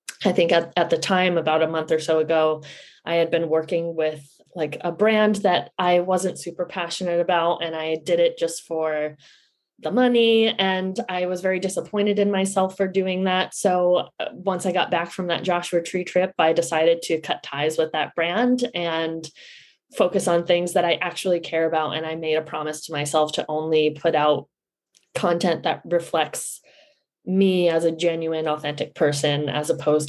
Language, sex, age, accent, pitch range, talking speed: English, female, 20-39, American, 160-185 Hz, 185 wpm